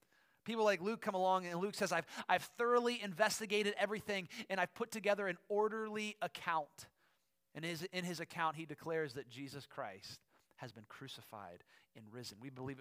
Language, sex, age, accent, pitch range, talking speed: English, male, 30-49, American, 135-170 Hz, 180 wpm